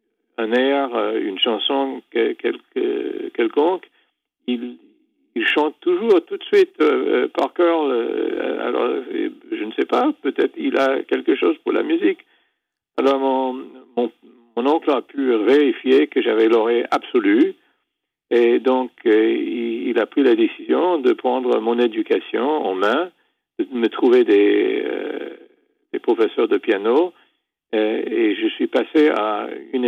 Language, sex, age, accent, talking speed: French, male, 50-69, French, 145 wpm